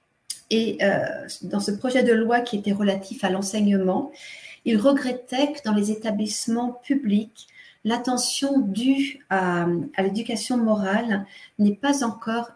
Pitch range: 200-260 Hz